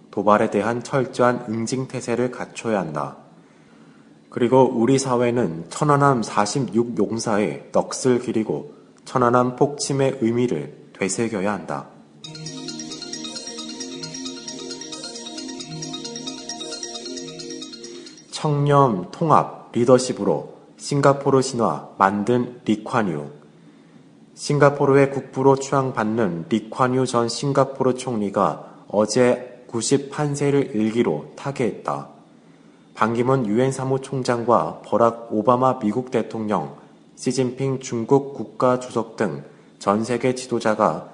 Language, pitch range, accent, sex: Korean, 105-130 Hz, native, male